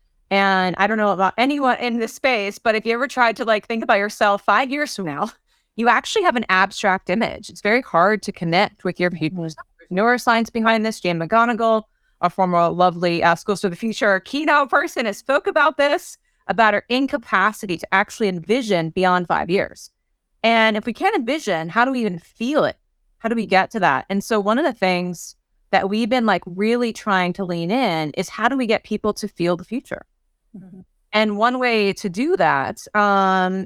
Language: English